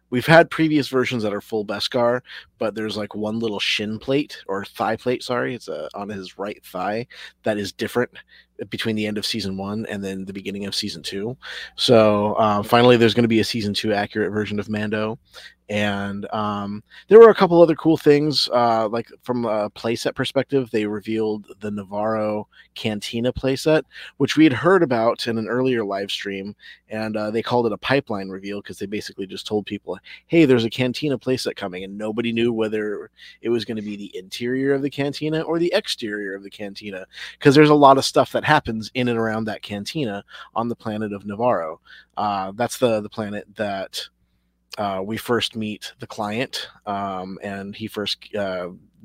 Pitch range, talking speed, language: 100-120 Hz, 195 wpm, English